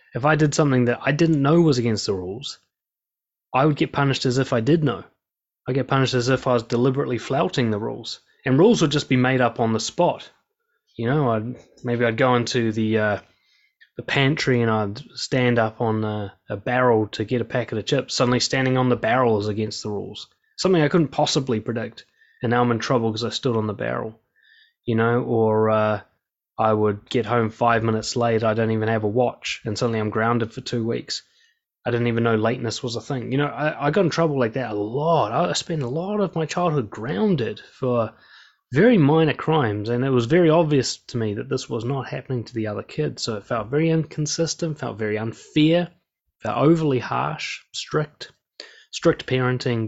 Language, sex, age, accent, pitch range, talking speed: English, male, 20-39, Australian, 115-150 Hz, 210 wpm